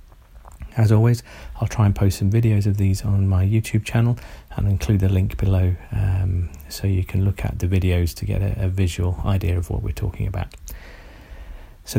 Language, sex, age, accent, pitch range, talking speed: English, male, 40-59, British, 90-110 Hz, 195 wpm